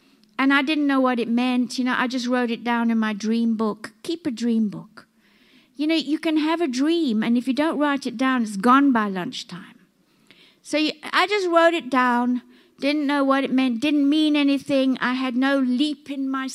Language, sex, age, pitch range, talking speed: English, female, 60-79, 245-305 Hz, 220 wpm